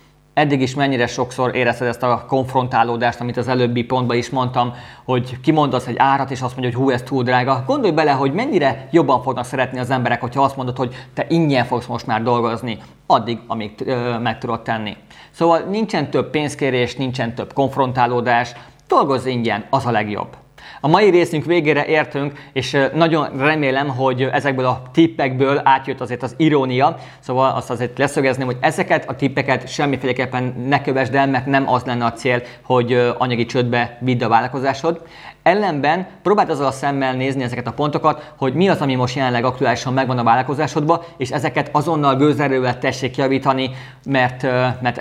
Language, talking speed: Hungarian, 175 wpm